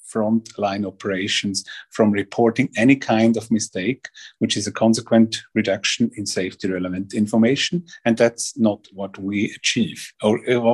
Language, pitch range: English, 110-140 Hz